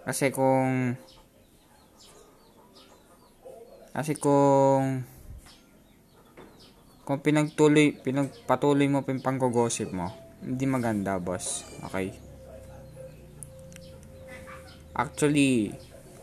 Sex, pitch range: male, 120-145 Hz